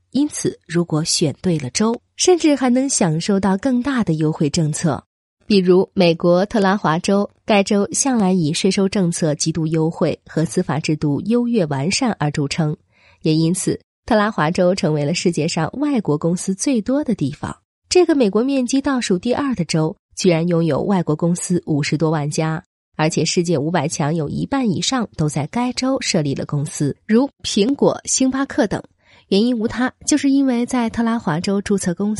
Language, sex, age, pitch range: Chinese, female, 20-39, 160-235 Hz